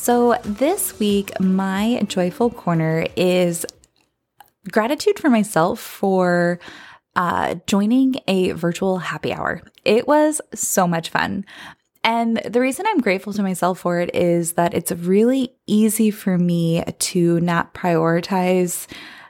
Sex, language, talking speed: female, English, 130 wpm